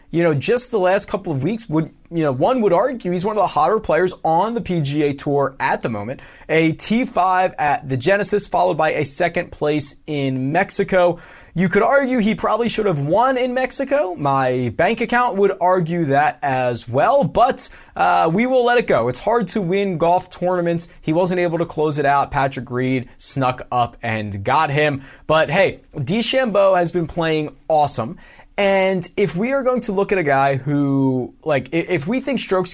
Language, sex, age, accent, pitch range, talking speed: English, male, 20-39, American, 140-190 Hz, 195 wpm